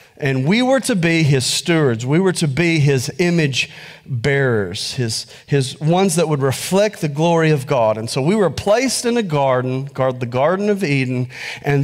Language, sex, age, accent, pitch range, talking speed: English, male, 40-59, American, 140-195 Hz, 190 wpm